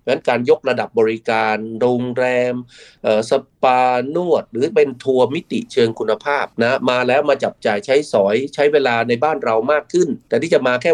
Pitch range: 115-160 Hz